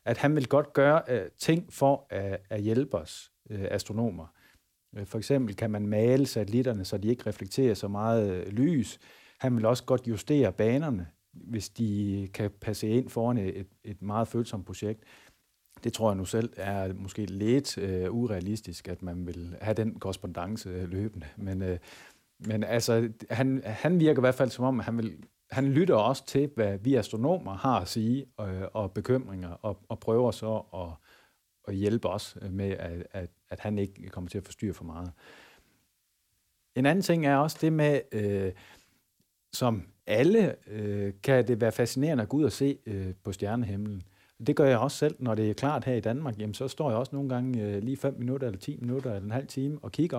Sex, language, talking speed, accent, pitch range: male, Danish, 195 wpm, native, 100-130 Hz